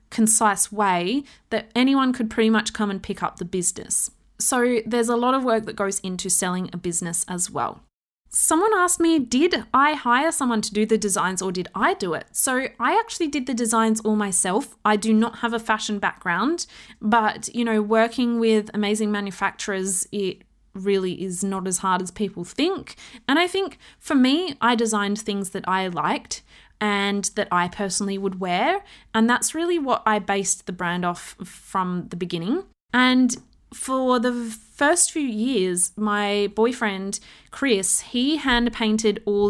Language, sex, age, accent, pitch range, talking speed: English, female, 20-39, Australian, 195-245 Hz, 175 wpm